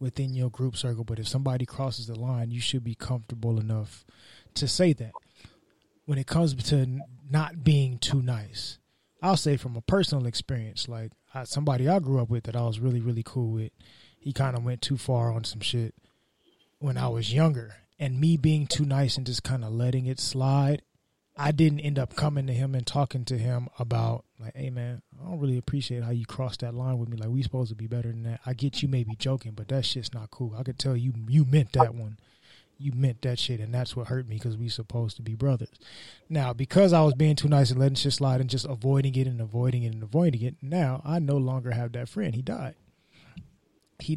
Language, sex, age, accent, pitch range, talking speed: English, male, 20-39, American, 120-140 Hz, 230 wpm